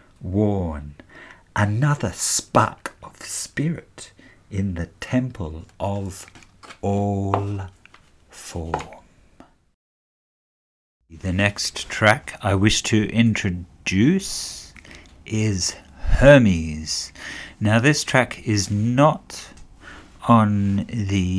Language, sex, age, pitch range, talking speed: English, male, 60-79, 90-115 Hz, 75 wpm